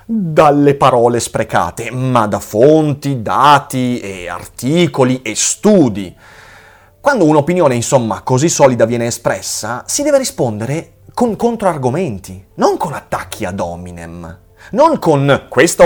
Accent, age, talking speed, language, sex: native, 30-49, 115 wpm, Italian, male